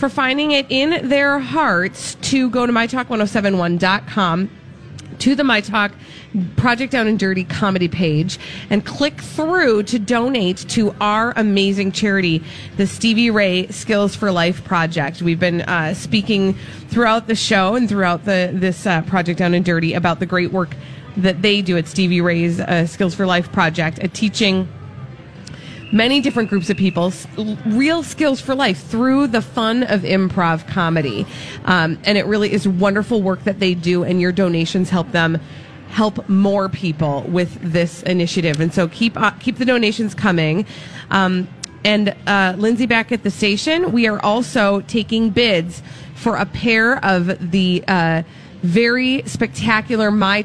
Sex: female